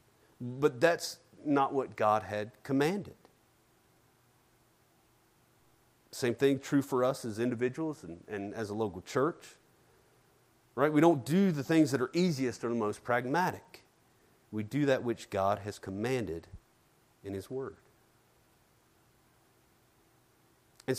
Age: 40-59